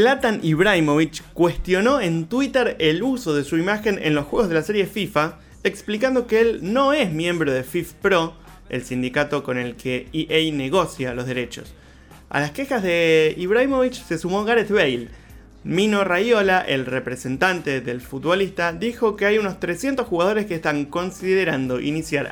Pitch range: 150-200 Hz